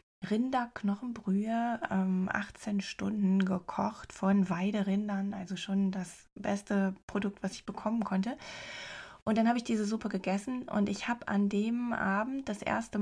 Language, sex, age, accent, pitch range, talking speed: German, female, 20-39, German, 190-210 Hz, 140 wpm